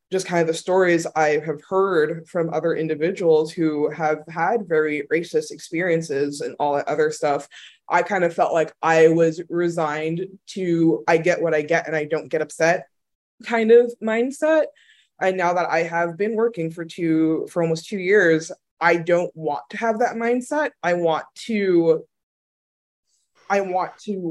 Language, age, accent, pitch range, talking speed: English, 20-39, American, 160-190 Hz, 175 wpm